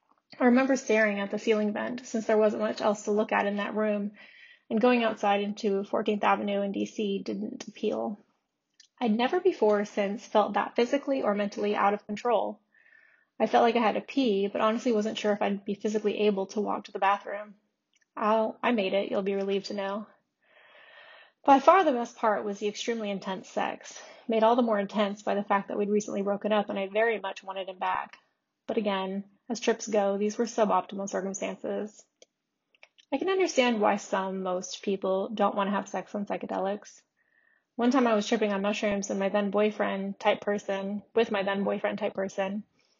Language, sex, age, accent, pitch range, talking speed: English, female, 20-39, American, 200-235 Hz, 200 wpm